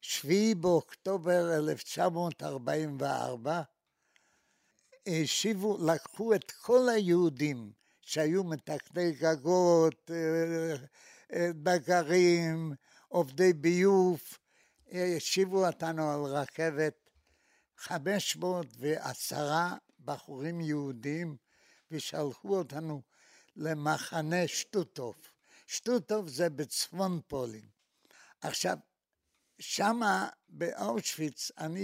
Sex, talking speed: male, 75 wpm